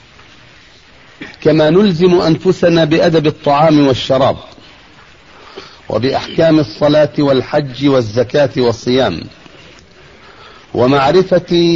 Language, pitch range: Arabic, 130-160 Hz